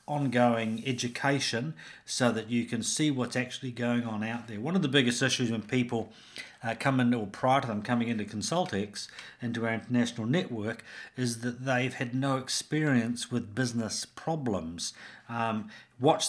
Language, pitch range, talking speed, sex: English, 115-130 Hz, 165 wpm, male